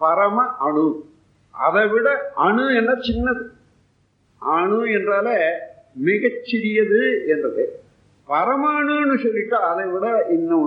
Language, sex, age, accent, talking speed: Tamil, male, 50-69, native, 95 wpm